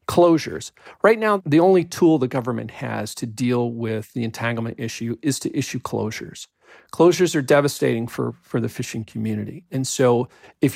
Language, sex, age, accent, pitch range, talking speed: English, male, 40-59, American, 120-160 Hz, 165 wpm